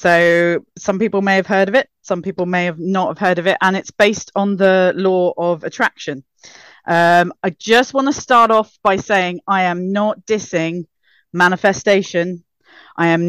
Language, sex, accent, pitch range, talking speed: English, female, British, 170-210 Hz, 185 wpm